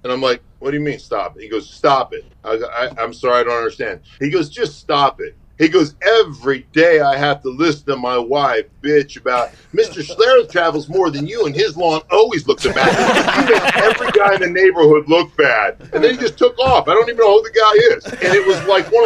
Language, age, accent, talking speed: English, 40-59, American, 245 wpm